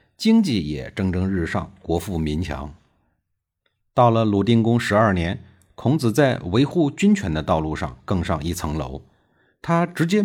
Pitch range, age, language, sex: 85-145 Hz, 50-69, Chinese, male